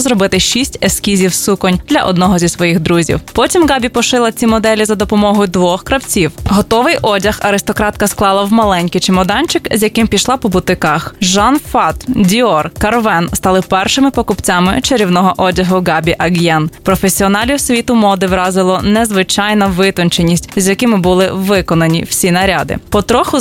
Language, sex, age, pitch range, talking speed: Ukrainian, female, 20-39, 185-235 Hz, 140 wpm